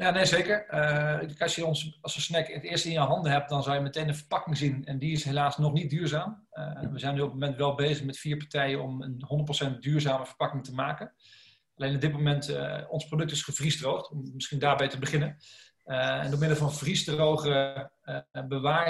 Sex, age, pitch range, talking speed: male, 40-59, 140-155 Hz, 225 wpm